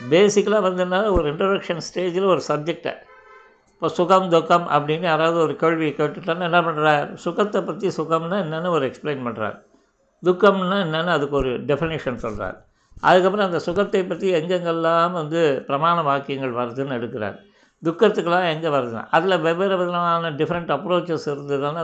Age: 60-79